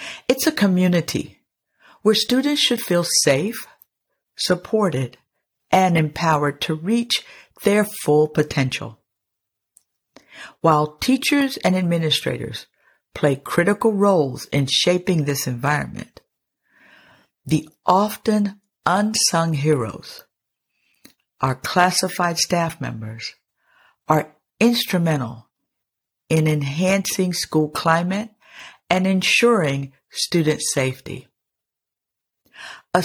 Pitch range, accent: 140-200 Hz, American